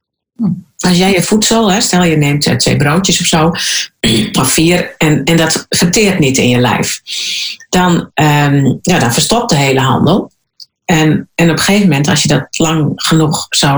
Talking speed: 155 wpm